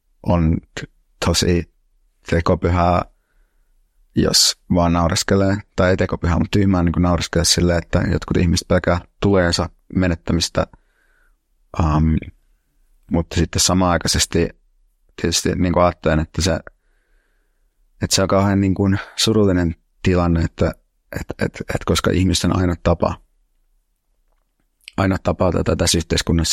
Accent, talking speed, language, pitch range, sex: native, 115 wpm, Finnish, 80-90 Hz, male